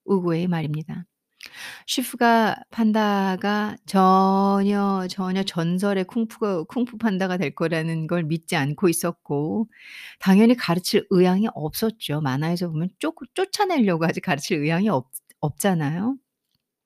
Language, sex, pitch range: Korean, female, 170-225 Hz